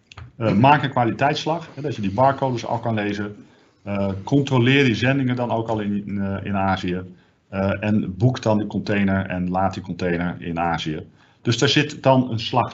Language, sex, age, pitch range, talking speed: Dutch, male, 50-69, 100-125 Hz, 190 wpm